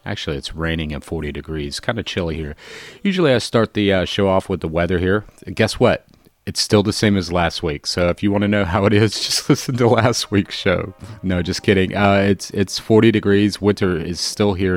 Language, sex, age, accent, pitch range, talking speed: English, male, 30-49, American, 80-100 Hz, 230 wpm